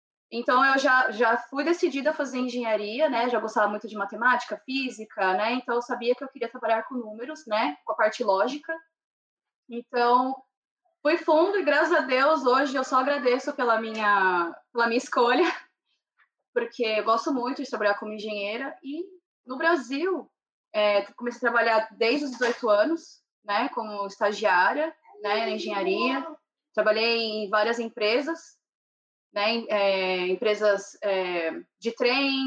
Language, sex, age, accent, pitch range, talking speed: Portuguese, female, 20-39, Brazilian, 210-270 Hz, 145 wpm